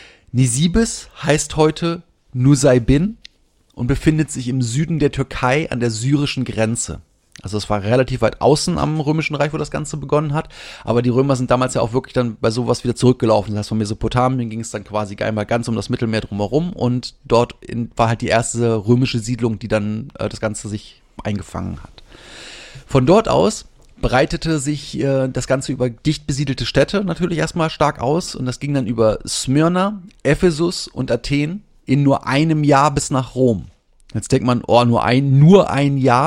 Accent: German